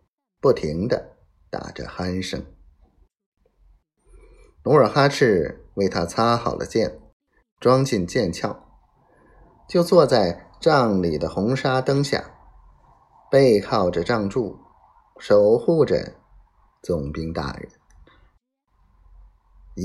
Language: Chinese